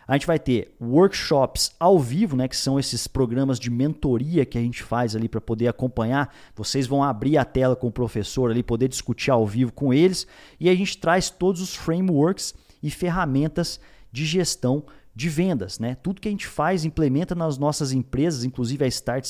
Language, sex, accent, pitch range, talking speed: Portuguese, male, Brazilian, 120-170 Hz, 195 wpm